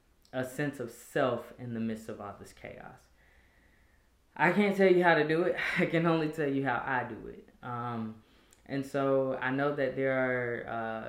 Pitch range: 110-135 Hz